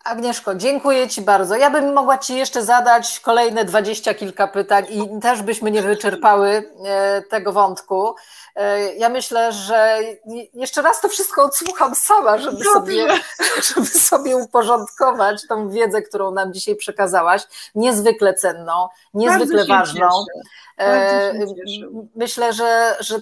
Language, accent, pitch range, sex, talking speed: Polish, native, 190-235 Hz, female, 120 wpm